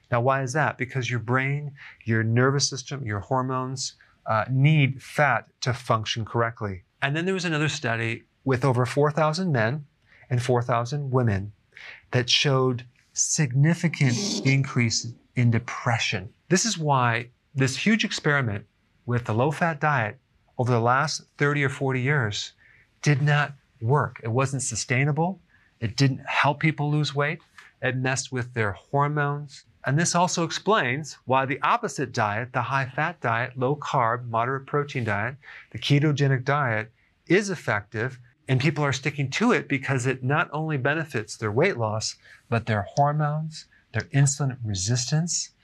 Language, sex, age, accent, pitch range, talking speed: English, male, 40-59, American, 120-145 Hz, 145 wpm